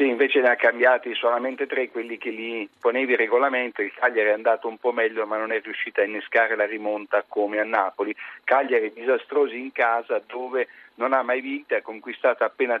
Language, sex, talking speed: Italian, male, 200 wpm